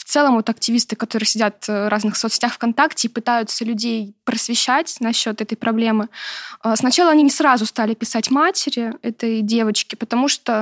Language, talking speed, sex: Russian, 160 wpm, female